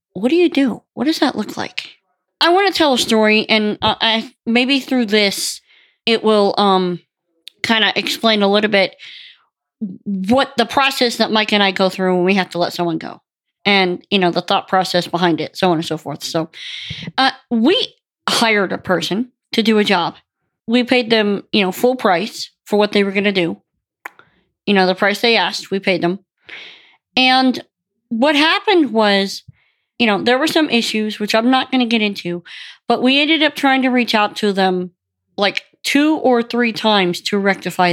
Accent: American